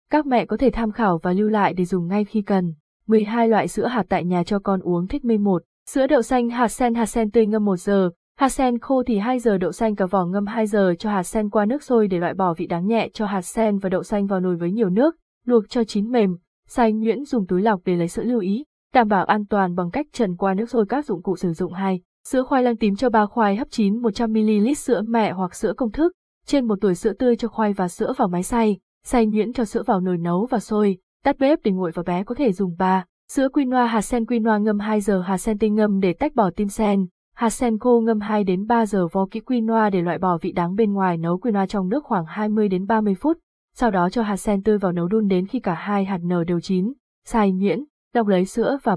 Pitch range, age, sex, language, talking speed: 190-235 Hz, 20-39, female, Vietnamese, 265 wpm